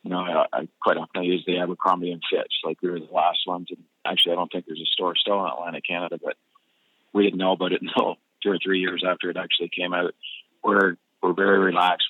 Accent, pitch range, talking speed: American, 85-95 Hz, 250 wpm